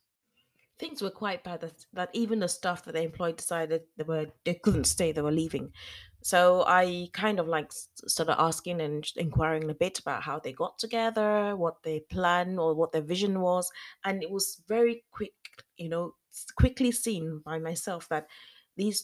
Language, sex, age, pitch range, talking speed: English, female, 20-39, 150-180 Hz, 185 wpm